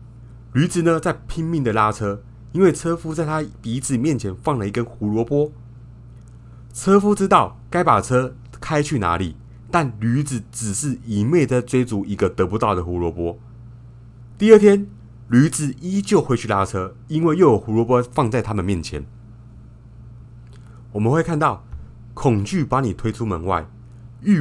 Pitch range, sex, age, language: 105-130 Hz, male, 30-49, Chinese